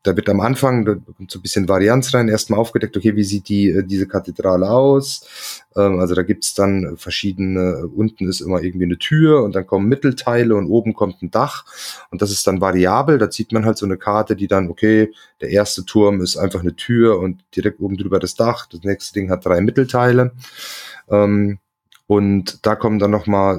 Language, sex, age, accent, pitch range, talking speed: German, male, 30-49, German, 100-130 Hz, 210 wpm